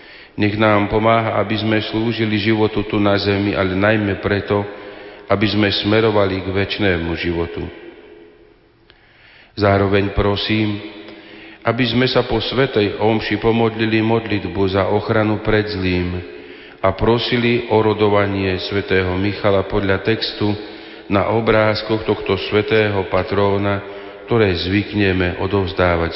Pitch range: 95-110 Hz